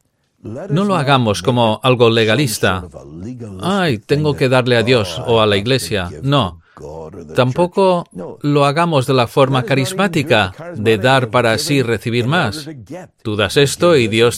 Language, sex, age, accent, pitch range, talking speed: English, male, 40-59, Spanish, 105-140 Hz, 145 wpm